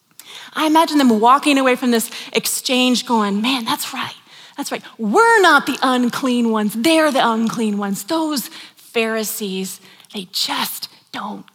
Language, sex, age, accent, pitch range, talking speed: English, female, 30-49, American, 180-230 Hz, 145 wpm